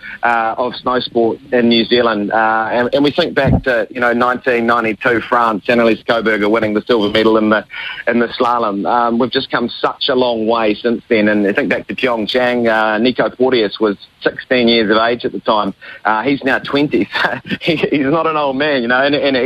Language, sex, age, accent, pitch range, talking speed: English, male, 30-49, Australian, 115-130 Hz, 220 wpm